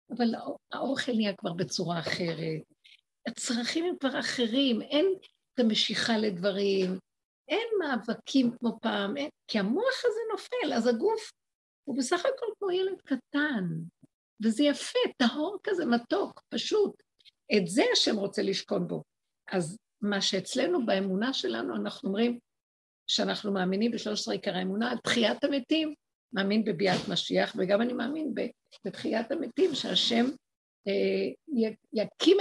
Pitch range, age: 205-285 Hz, 50-69